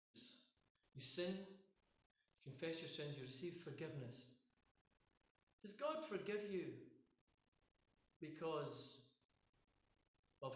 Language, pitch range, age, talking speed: English, 125-180 Hz, 50-69, 80 wpm